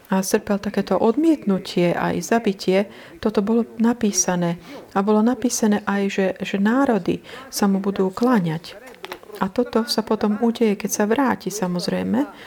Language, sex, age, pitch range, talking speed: Slovak, female, 40-59, 180-220 Hz, 140 wpm